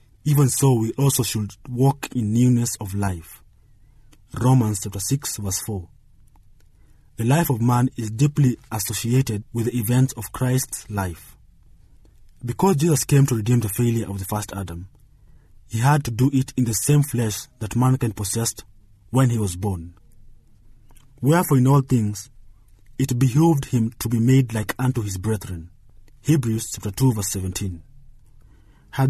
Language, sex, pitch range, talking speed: English, male, 105-130 Hz, 155 wpm